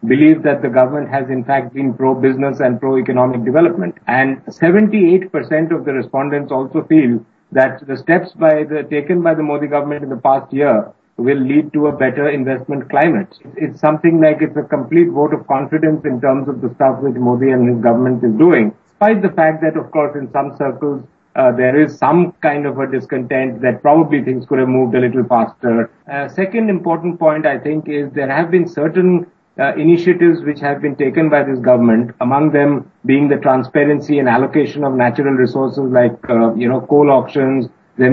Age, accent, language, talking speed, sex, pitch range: 50-69, Indian, English, 200 wpm, male, 130-155 Hz